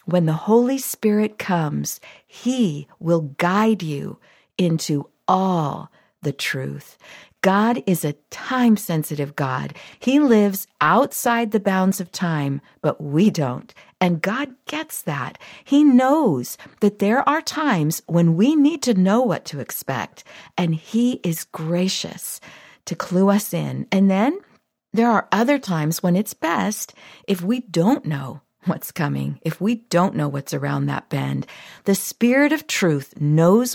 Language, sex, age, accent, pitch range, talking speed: English, female, 50-69, American, 155-220 Hz, 145 wpm